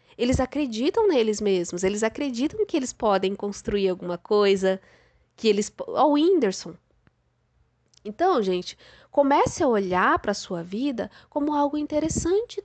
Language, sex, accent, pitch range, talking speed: Portuguese, female, Brazilian, 190-300 Hz, 140 wpm